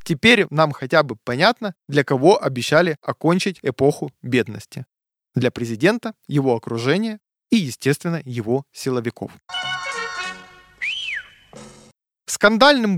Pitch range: 130-180 Hz